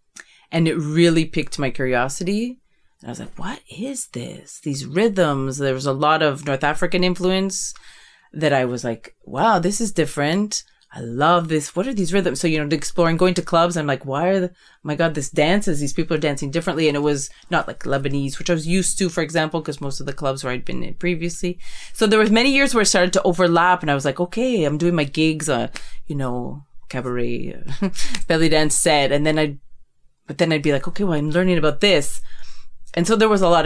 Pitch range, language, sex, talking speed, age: 135-175 Hz, English, female, 230 wpm, 30-49